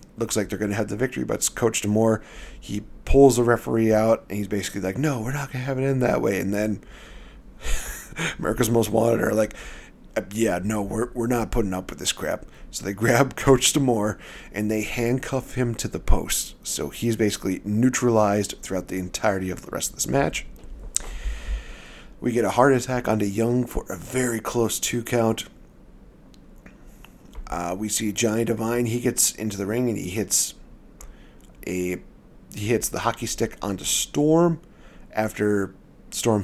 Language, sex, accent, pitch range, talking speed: English, male, American, 100-120 Hz, 180 wpm